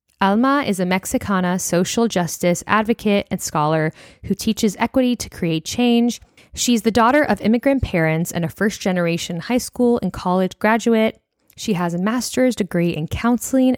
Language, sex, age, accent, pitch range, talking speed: English, female, 10-29, American, 175-220 Hz, 155 wpm